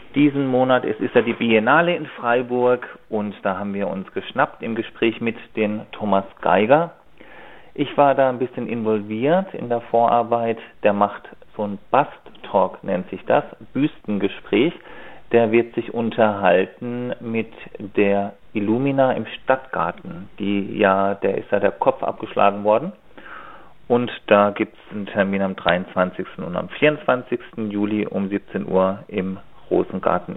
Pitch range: 105-125 Hz